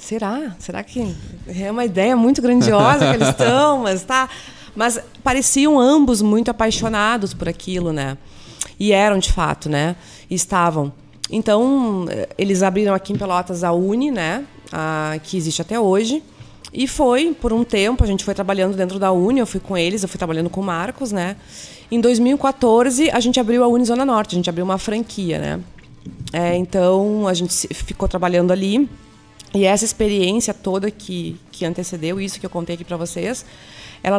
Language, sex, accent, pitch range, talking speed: Portuguese, female, Brazilian, 180-235 Hz, 180 wpm